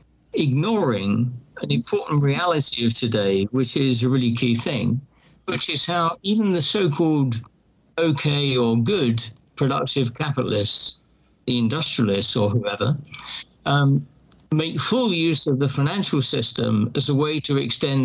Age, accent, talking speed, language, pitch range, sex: 50-69, British, 135 wpm, English, 120-155 Hz, male